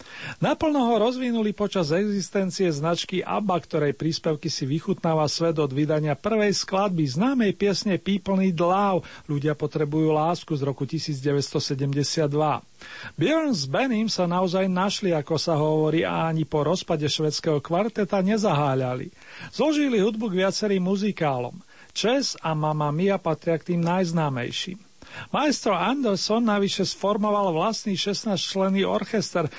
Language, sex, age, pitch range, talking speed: Slovak, male, 40-59, 155-205 Hz, 125 wpm